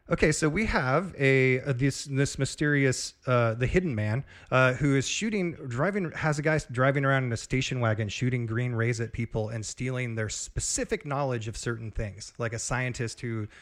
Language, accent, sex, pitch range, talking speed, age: English, American, male, 120-150 Hz, 195 wpm, 30-49